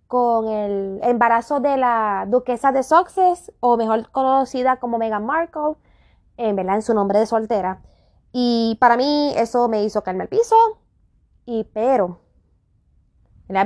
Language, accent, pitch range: Spanish, American, 215-285 Hz